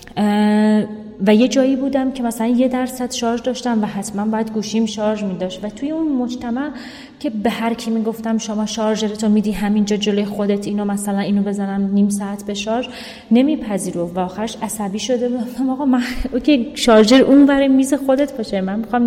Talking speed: 170 wpm